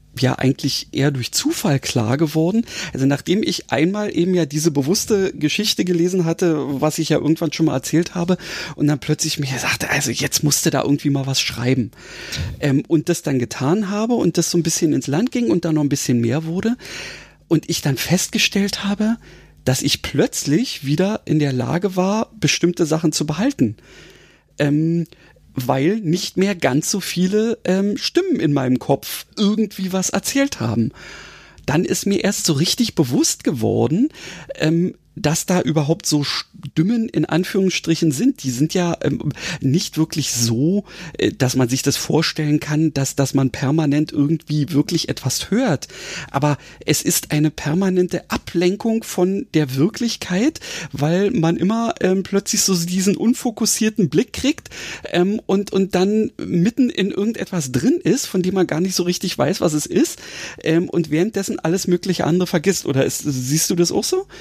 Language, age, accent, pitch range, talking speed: German, 40-59, German, 150-195 Hz, 170 wpm